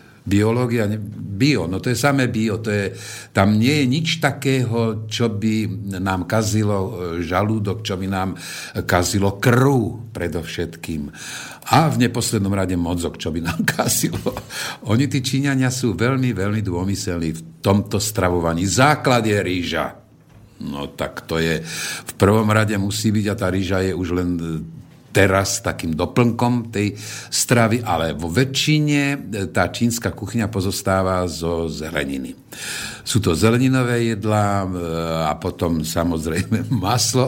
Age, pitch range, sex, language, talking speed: 50-69, 90-120 Hz, male, Slovak, 135 wpm